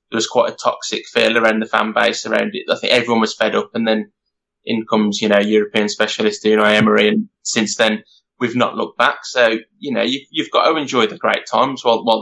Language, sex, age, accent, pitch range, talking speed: English, male, 20-39, British, 110-125 Hz, 230 wpm